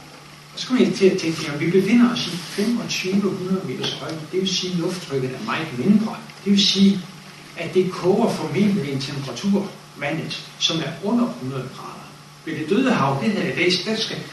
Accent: native